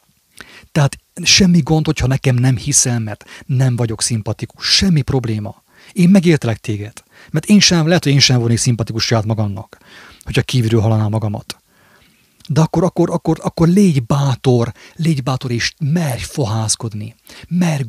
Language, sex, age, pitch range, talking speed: English, male, 30-49, 115-145 Hz, 150 wpm